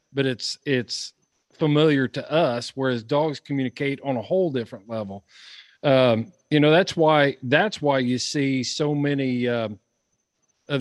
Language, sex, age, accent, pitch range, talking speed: English, male, 40-59, American, 125-145 Hz, 150 wpm